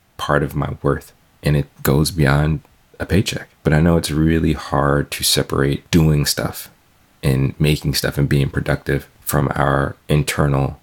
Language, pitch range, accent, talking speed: English, 70-80 Hz, American, 160 wpm